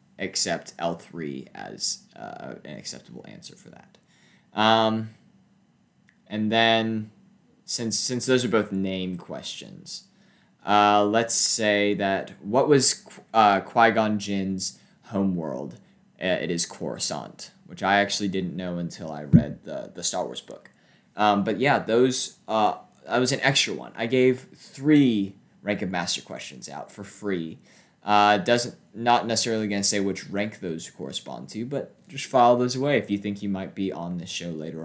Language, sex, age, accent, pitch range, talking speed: English, male, 20-39, American, 100-115 Hz, 160 wpm